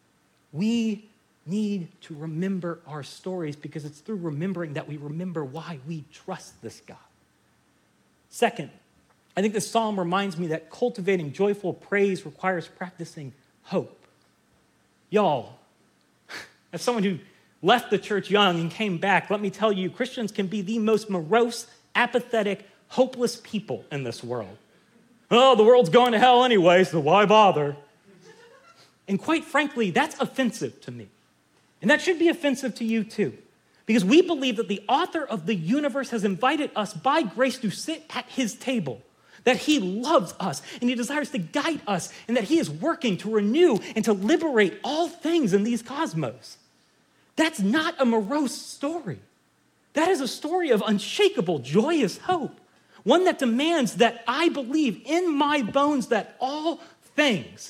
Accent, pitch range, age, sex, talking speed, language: American, 185-265 Hz, 30-49, male, 160 wpm, English